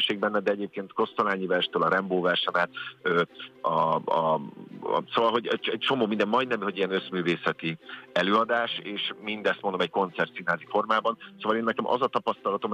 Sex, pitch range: male, 85-100 Hz